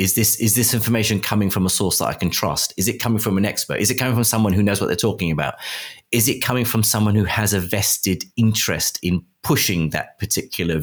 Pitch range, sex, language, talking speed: 90-120 Hz, male, English, 240 wpm